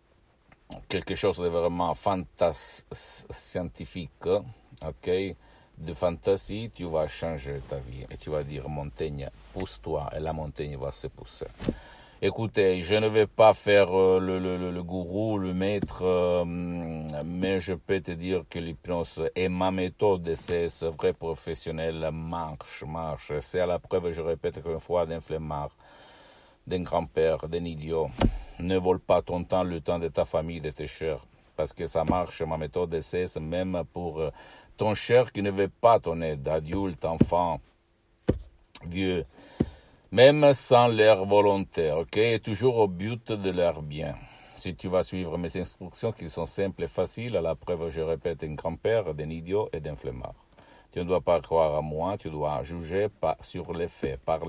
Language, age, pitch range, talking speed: Italian, 60-79, 80-95 Hz, 170 wpm